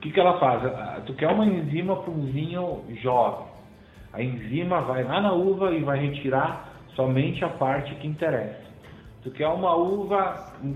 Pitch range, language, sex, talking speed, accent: 130-170 Hz, Portuguese, male, 180 wpm, Brazilian